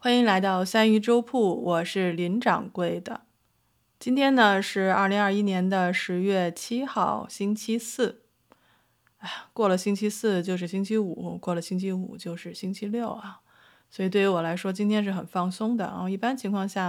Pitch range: 175-205 Hz